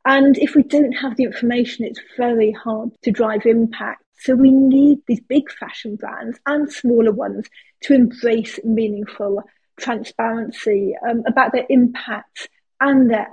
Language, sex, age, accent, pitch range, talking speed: English, female, 40-59, British, 225-265 Hz, 150 wpm